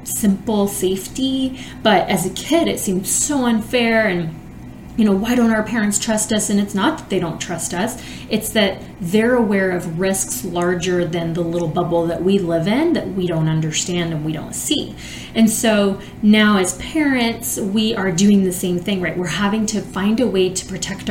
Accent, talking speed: American, 200 wpm